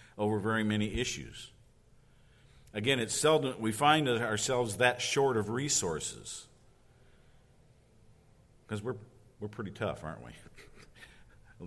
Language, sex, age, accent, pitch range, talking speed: English, male, 50-69, American, 95-130 Hz, 115 wpm